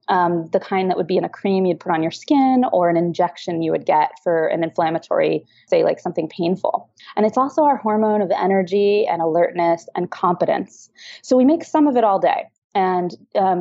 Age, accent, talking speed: 20-39, American, 210 wpm